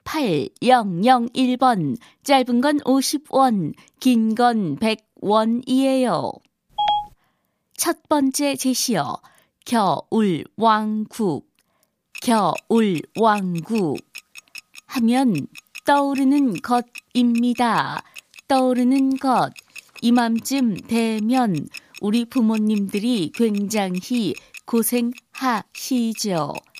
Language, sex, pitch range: Korean, female, 220-255 Hz